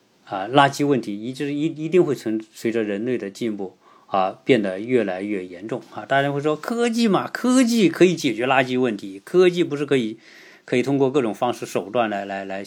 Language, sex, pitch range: Chinese, male, 105-150 Hz